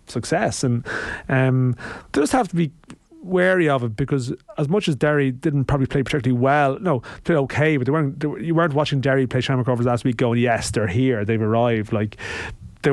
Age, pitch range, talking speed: 30-49, 120-145 Hz, 210 wpm